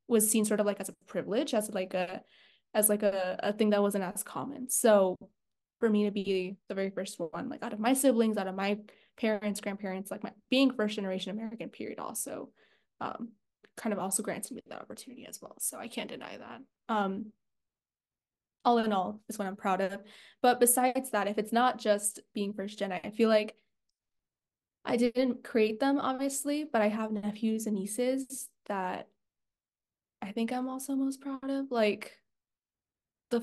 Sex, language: female, English